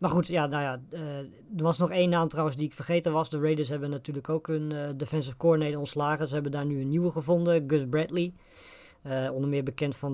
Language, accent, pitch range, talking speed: Dutch, Dutch, 135-160 Hz, 230 wpm